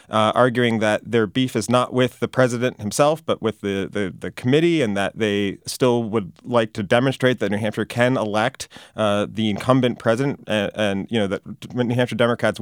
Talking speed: 200 wpm